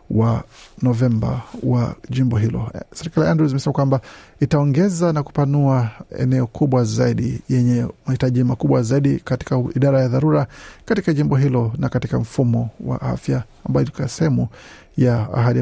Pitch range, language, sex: 125-150 Hz, Swahili, male